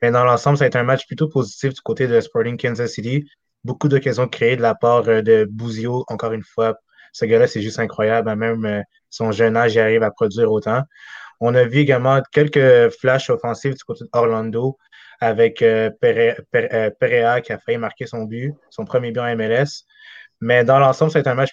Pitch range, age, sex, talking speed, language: 115-135 Hz, 20-39, male, 195 wpm, French